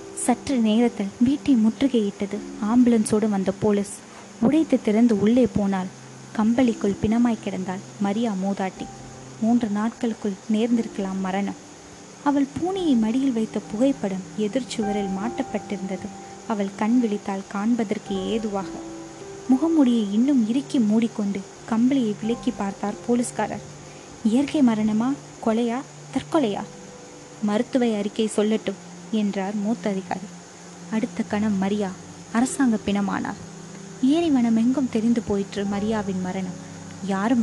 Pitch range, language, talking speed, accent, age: 195-235 Hz, Tamil, 100 wpm, native, 20-39